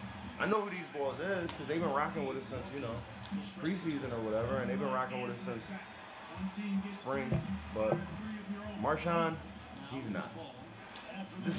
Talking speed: 160 wpm